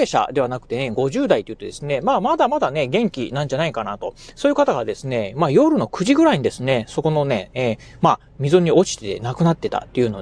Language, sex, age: Japanese, male, 30-49